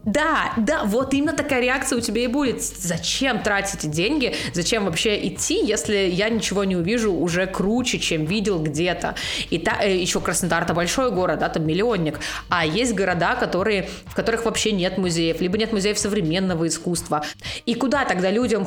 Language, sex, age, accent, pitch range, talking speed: Russian, female, 20-39, native, 180-235 Hz, 175 wpm